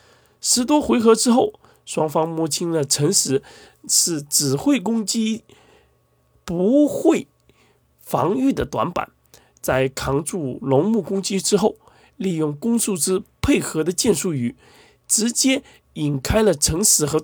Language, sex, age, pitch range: Chinese, male, 20-39, 145-220 Hz